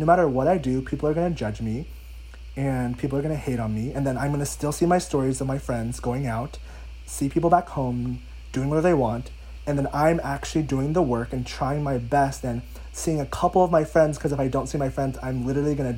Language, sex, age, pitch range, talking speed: English, male, 20-39, 110-145 Hz, 250 wpm